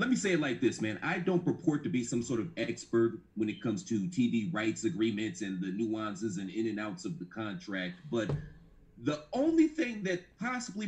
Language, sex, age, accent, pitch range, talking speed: English, male, 30-49, American, 115-180 Hz, 215 wpm